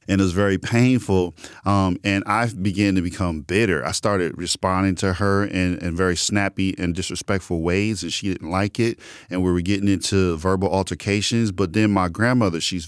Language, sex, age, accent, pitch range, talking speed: English, male, 40-59, American, 90-110 Hz, 190 wpm